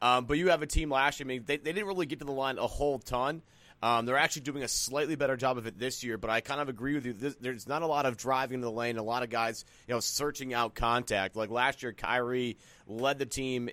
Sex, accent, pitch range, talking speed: male, American, 110-130 Hz, 290 wpm